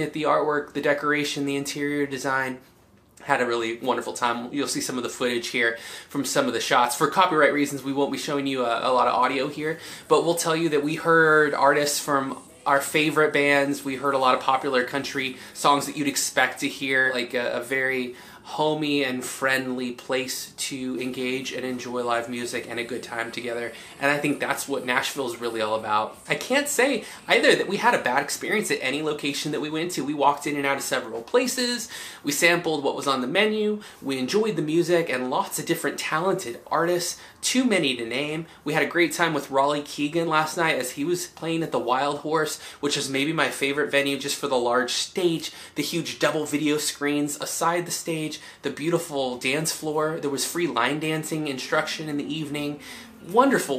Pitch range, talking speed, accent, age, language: 130-160 Hz, 210 wpm, American, 20-39, English